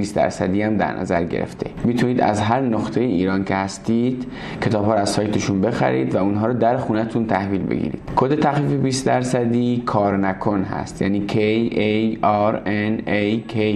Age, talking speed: 20-39, 165 wpm